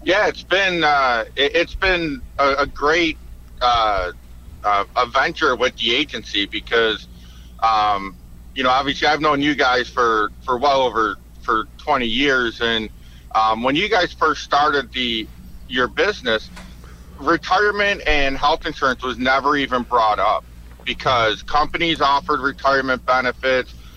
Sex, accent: male, American